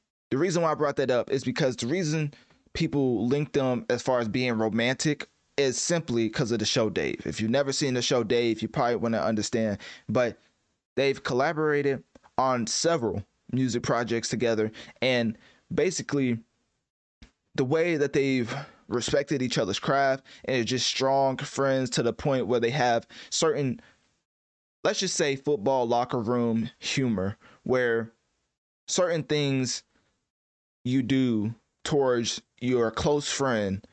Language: English